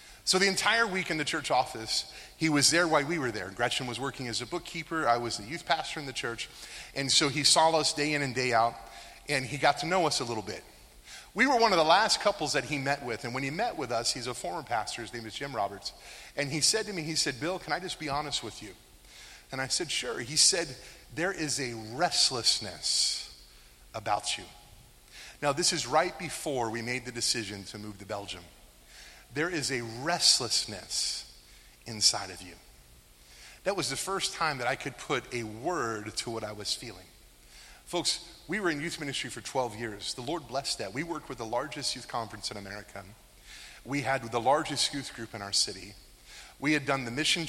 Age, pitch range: 30-49, 110-155 Hz